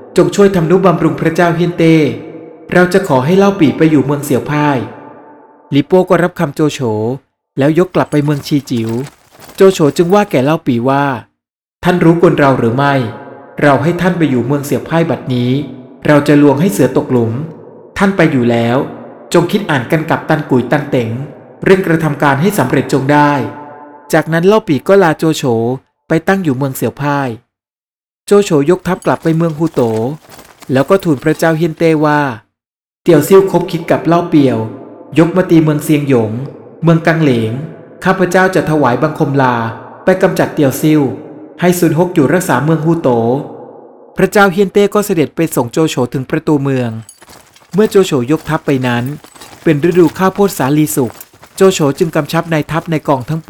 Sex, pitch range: male, 135-170 Hz